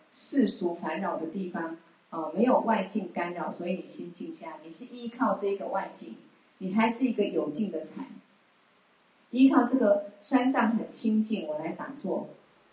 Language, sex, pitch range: Chinese, female, 175-235 Hz